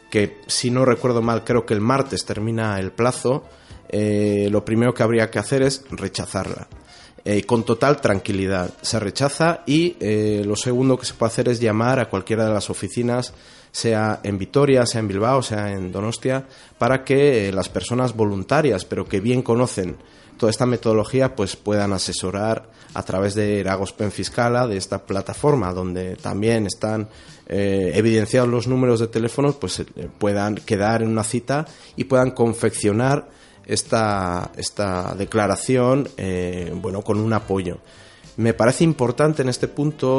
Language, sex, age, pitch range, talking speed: Spanish, male, 30-49, 100-125 Hz, 160 wpm